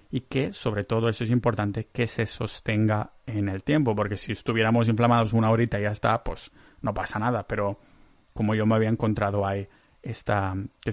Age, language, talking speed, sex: 30-49, Spanish, 185 wpm, male